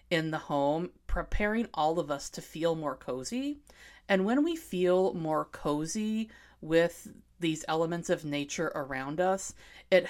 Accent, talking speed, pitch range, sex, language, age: American, 150 wpm, 145-190 Hz, female, English, 30-49